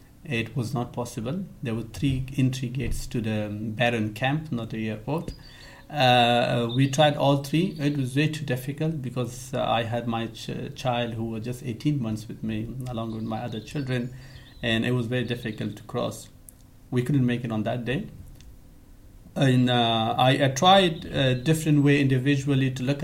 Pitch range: 115-130 Hz